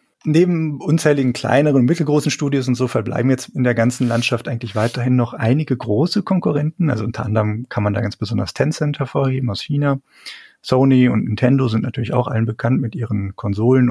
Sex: male